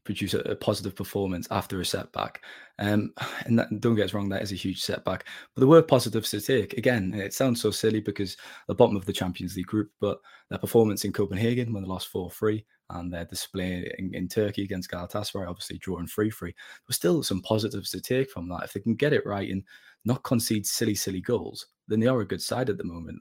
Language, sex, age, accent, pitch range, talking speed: English, male, 20-39, British, 95-110 Hz, 235 wpm